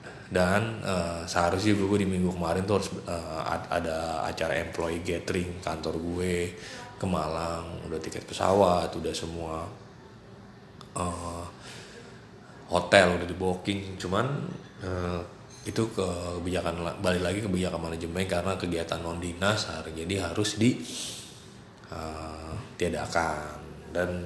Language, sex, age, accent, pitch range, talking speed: Indonesian, male, 20-39, native, 85-100 Hz, 115 wpm